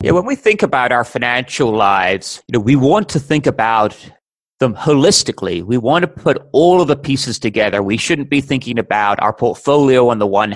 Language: English